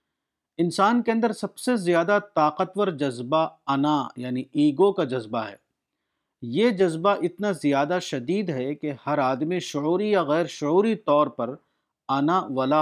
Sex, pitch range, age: male, 140-190 Hz, 50-69